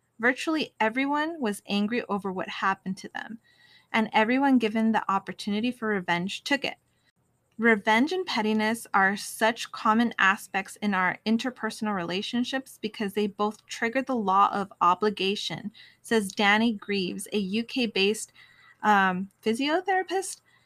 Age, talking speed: 20-39, 125 wpm